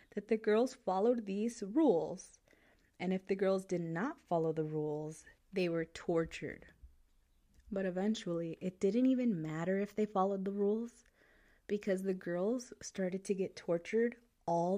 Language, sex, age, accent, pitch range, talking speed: English, female, 30-49, American, 170-230 Hz, 150 wpm